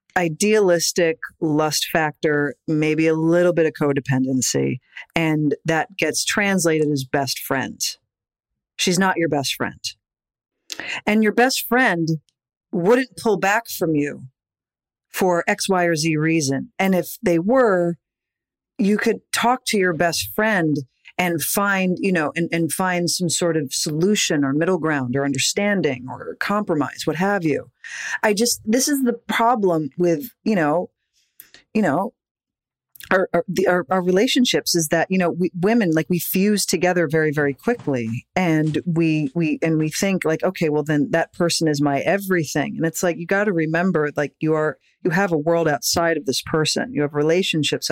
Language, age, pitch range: English, 50-69, 150-190 Hz